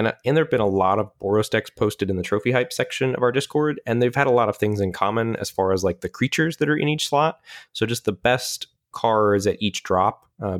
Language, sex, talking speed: English, male, 270 wpm